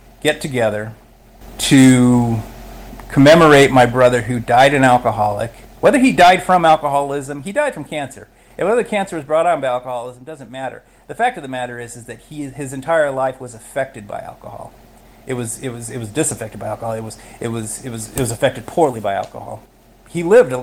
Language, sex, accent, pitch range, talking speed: English, male, American, 120-150 Hz, 200 wpm